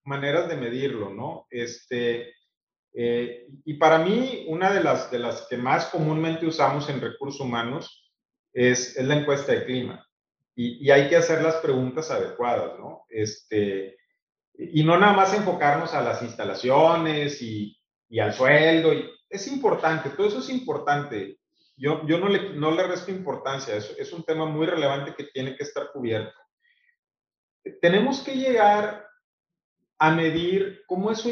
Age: 40-59